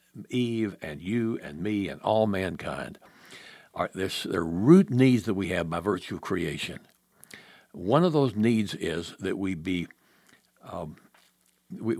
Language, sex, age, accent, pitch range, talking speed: English, male, 60-79, American, 95-135 Hz, 150 wpm